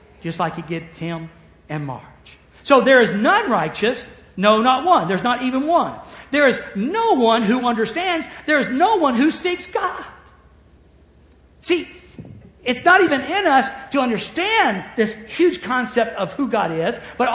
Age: 50-69